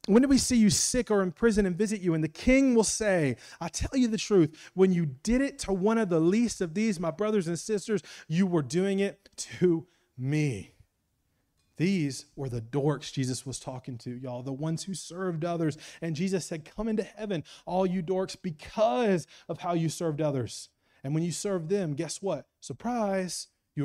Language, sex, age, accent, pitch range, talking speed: English, male, 30-49, American, 130-185 Hz, 205 wpm